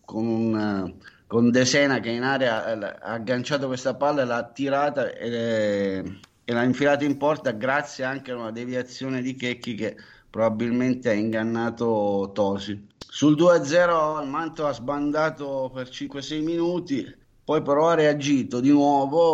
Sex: male